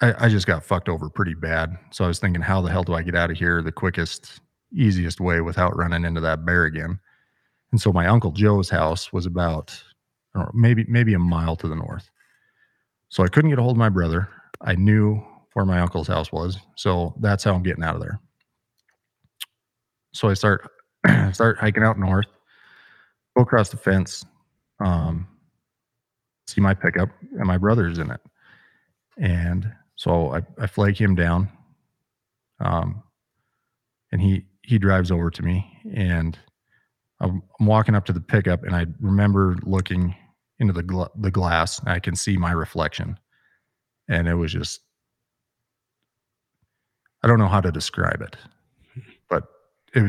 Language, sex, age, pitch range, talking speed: English, male, 30-49, 85-105 Hz, 170 wpm